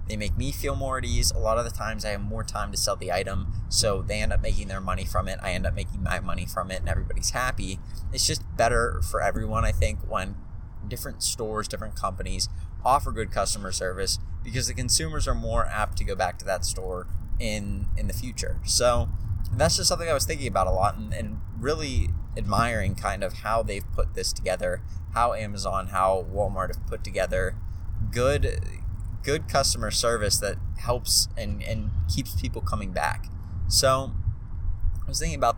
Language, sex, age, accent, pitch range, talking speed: English, male, 20-39, American, 90-105 Hz, 195 wpm